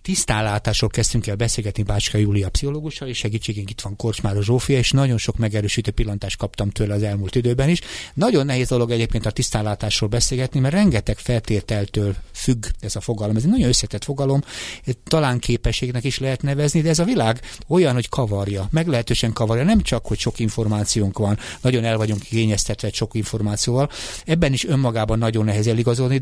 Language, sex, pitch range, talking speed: Hungarian, male, 105-135 Hz, 175 wpm